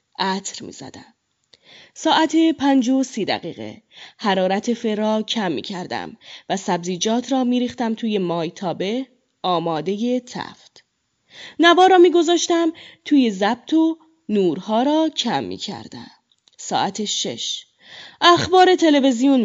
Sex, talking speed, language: female, 110 wpm, Persian